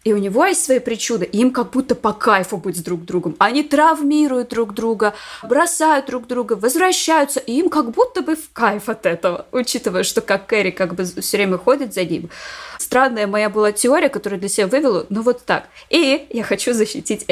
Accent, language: native, Russian